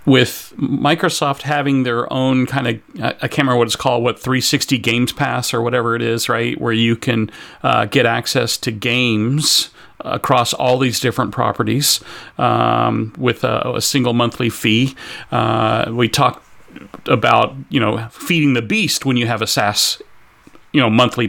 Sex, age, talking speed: male, 40-59, 165 wpm